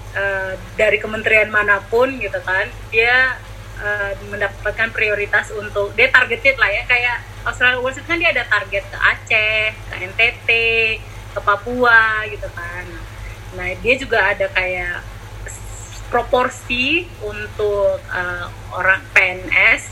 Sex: female